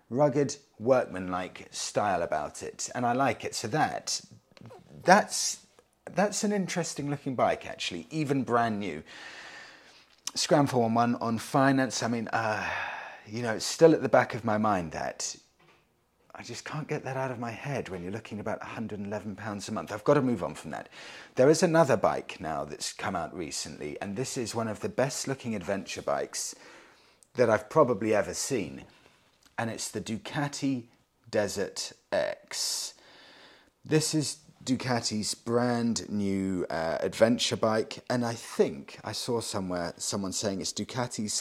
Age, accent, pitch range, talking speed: 30-49, British, 105-140 Hz, 160 wpm